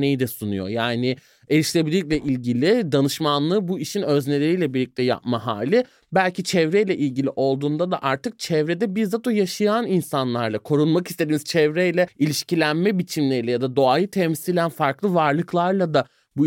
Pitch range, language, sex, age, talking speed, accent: 125-180 Hz, Turkish, male, 30-49, 130 wpm, native